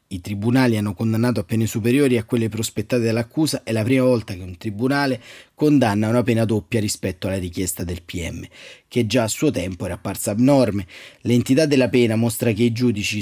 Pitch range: 105-130 Hz